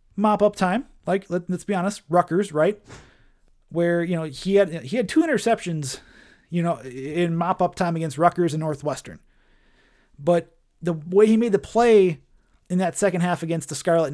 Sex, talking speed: male, 170 wpm